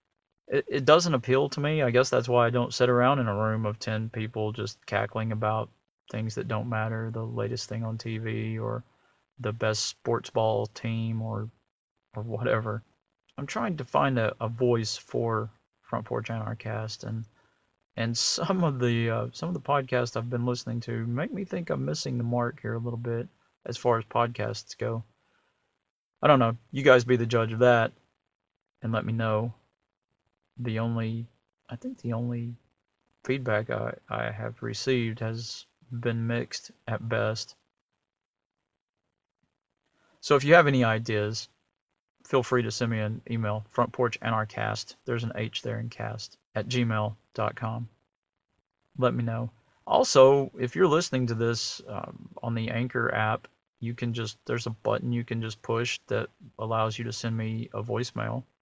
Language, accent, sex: English, American, male